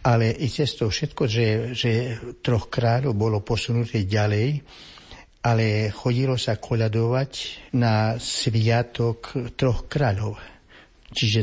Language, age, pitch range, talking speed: Slovak, 60-79, 110-125 Hz, 110 wpm